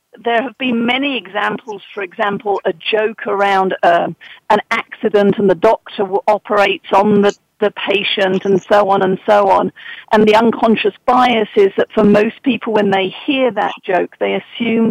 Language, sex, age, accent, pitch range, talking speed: English, female, 50-69, British, 195-235 Hz, 175 wpm